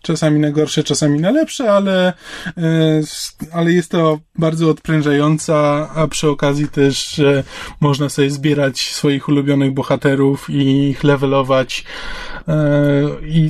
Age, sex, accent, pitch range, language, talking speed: 20-39, male, native, 150-170 Hz, Polish, 115 wpm